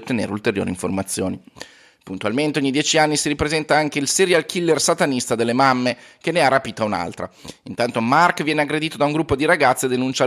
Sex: male